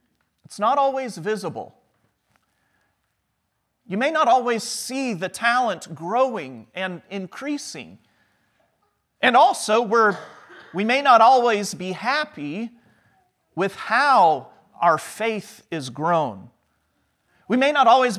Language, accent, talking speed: English, American, 105 wpm